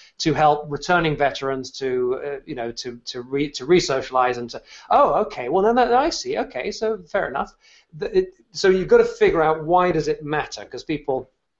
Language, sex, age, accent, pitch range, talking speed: English, male, 40-59, British, 130-180 Hz, 210 wpm